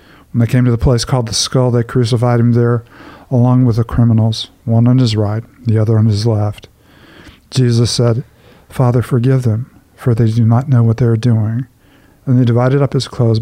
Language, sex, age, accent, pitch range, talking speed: English, male, 50-69, American, 115-125 Hz, 205 wpm